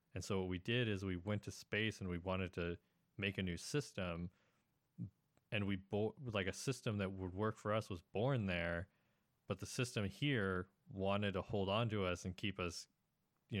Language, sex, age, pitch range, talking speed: English, male, 20-39, 90-120 Hz, 205 wpm